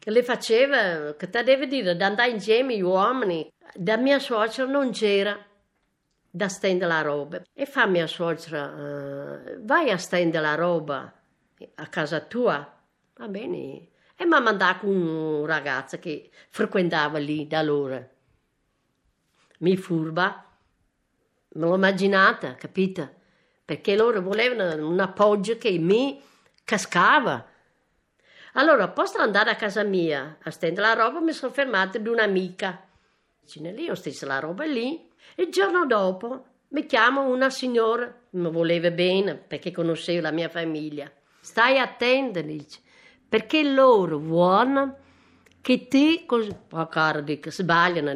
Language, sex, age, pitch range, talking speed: Italian, female, 60-79, 160-235 Hz, 135 wpm